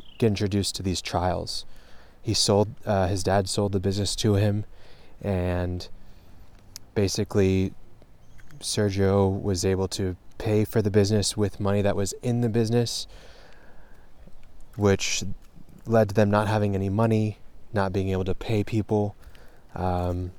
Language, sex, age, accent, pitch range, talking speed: English, male, 20-39, American, 95-105 Hz, 135 wpm